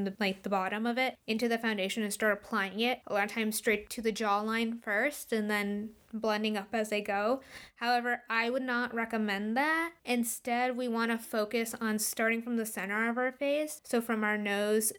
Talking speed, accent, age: 210 wpm, American, 20-39